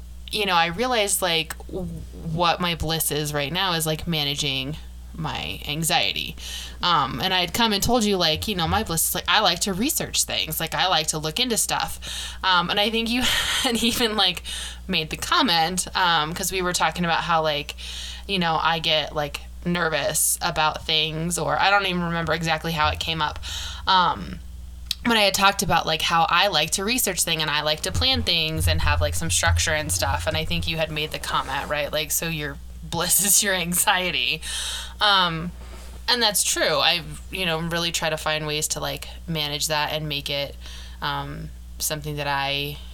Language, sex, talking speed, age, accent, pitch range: English, female, 205 wpm, 20-39, American, 140-175 Hz